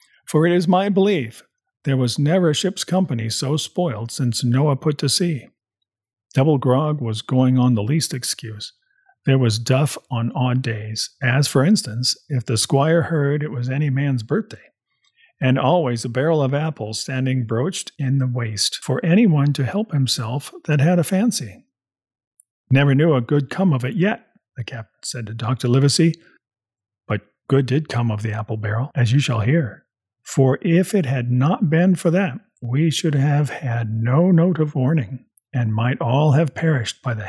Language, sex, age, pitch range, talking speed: English, male, 40-59, 120-155 Hz, 180 wpm